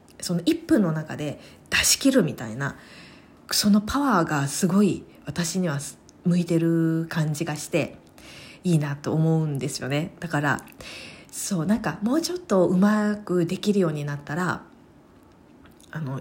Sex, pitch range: female, 160-215 Hz